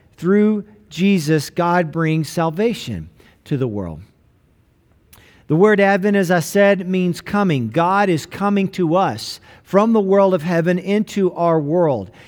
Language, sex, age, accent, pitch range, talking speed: English, male, 50-69, American, 145-180 Hz, 140 wpm